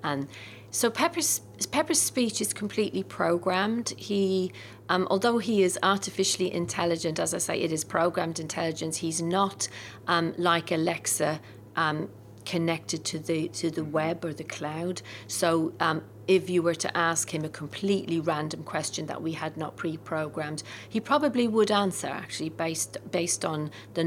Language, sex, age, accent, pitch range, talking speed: English, female, 40-59, British, 145-170 Hz, 160 wpm